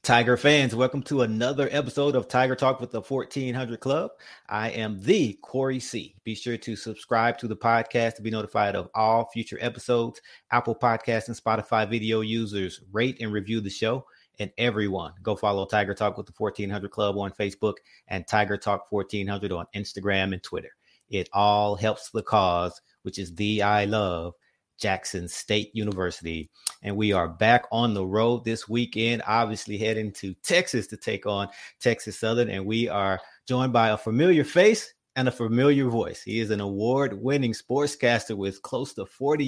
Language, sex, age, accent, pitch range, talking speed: English, male, 30-49, American, 100-120 Hz, 175 wpm